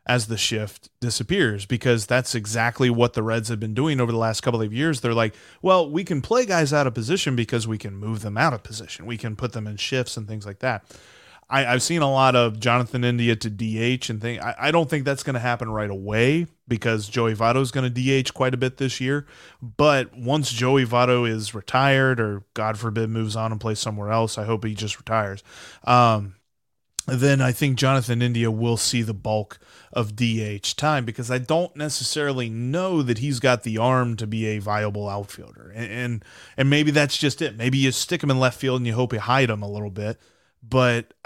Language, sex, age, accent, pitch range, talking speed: English, male, 30-49, American, 110-135 Hz, 225 wpm